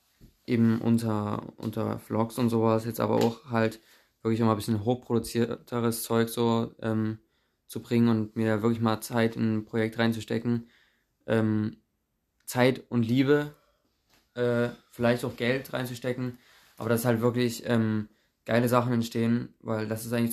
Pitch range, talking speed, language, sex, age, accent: 110-120 Hz, 150 wpm, German, male, 20-39, German